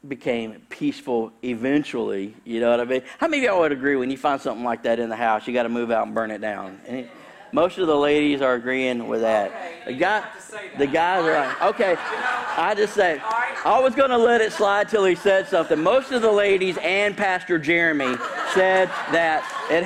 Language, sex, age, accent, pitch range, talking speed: English, male, 50-69, American, 120-205 Hz, 220 wpm